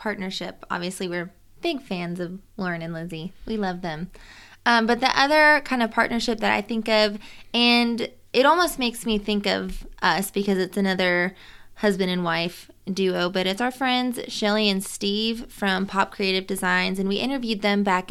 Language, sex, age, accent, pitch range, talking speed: English, female, 20-39, American, 185-215 Hz, 180 wpm